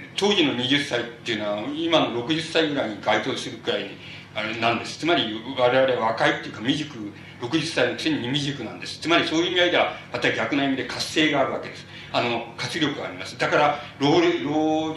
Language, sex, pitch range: Japanese, male, 125-160 Hz